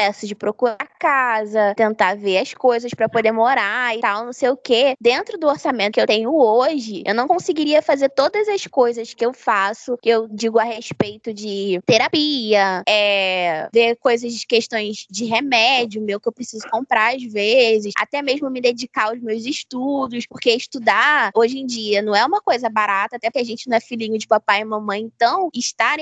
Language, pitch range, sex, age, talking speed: Portuguese, 220-275 Hz, female, 20-39, 195 wpm